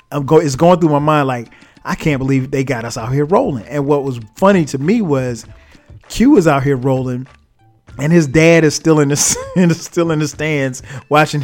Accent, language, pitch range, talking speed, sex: American, English, 125-150 Hz, 225 wpm, male